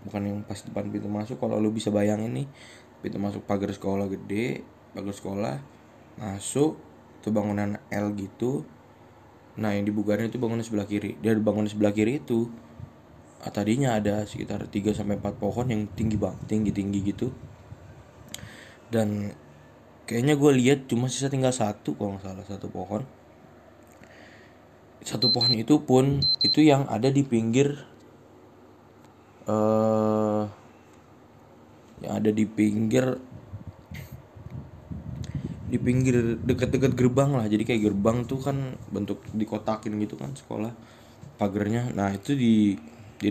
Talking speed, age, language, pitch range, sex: 125 wpm, 20-39, Indonesian, 105-120 Hz, male